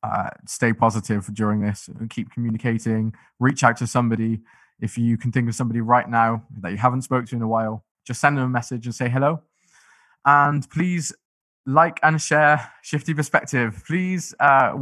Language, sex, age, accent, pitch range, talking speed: English, male, 20-39, British, 115-150 Hz, 180 wpm